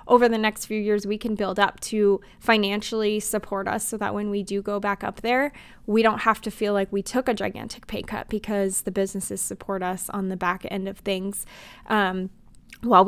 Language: English